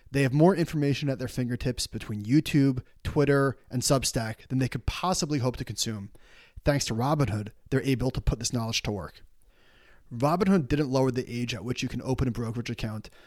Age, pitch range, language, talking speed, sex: 30-49, 115-155 Hz, English, 195 wpm, male